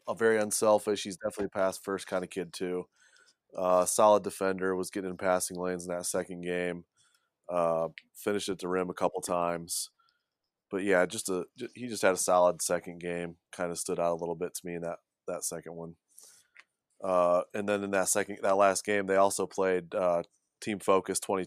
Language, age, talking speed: English, 20-39, 205 wpm